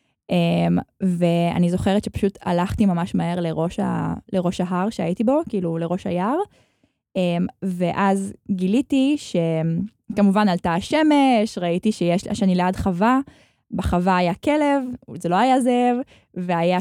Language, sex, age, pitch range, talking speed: Hebrew, female, 20-39, 180-235 Hz, 125 wpm